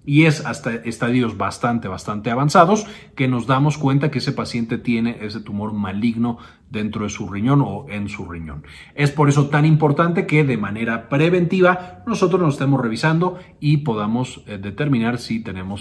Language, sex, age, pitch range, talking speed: Spanish, male, 40-59, 115-155 Hz, 165 wpm